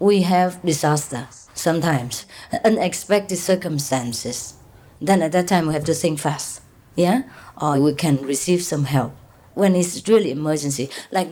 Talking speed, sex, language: 145 wpm, female, English